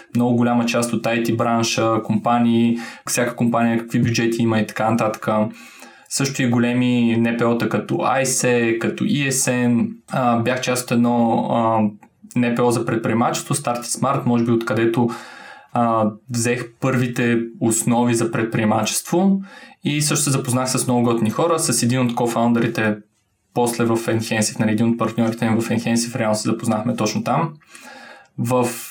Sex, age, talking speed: male, 20-39, 140 wpm